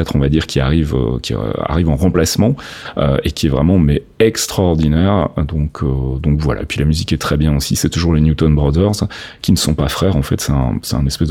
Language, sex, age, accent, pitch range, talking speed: French, male, 30-49, French, 80-110 Hz, 245 wpm